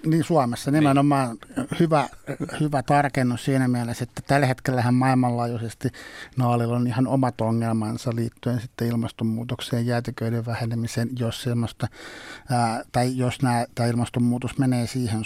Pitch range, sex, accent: 115-130 Hz, male, native